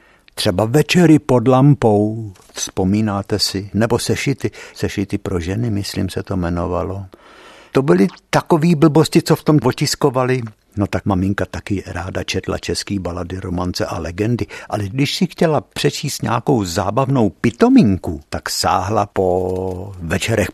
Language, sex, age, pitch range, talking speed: Czech, male, 60-79, 95-145 Hz, 135 wpm